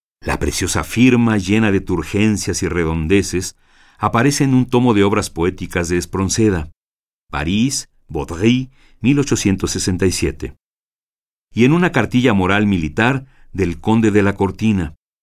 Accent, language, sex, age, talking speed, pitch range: Mexican, Spanish, male, 50-69, 120 wpm, 85-115 Hz